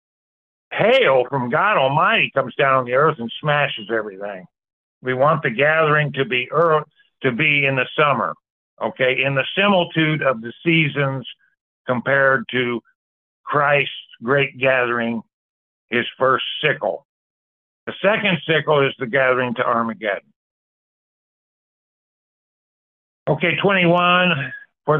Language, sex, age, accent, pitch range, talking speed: English, male, 50-69, American, 130-165 Hz, 120 wpm